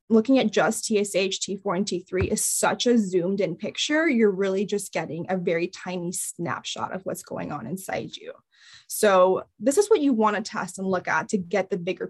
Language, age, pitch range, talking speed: English, 10-29, 185-225 Hz, 210 wpm